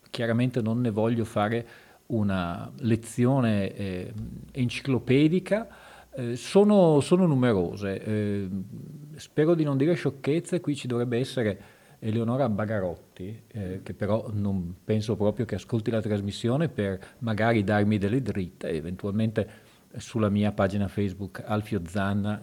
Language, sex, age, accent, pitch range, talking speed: Italian, male, 40-59, native, 100-125 Hz, 125 wpm